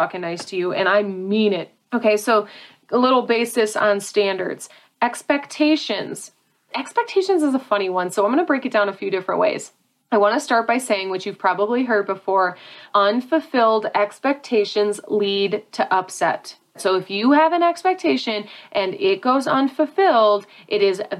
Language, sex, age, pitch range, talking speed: English, female, 30-49, 200-270 Hz, 170 wpm